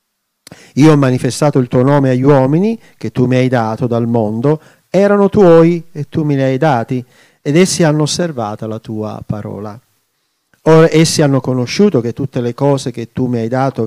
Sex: male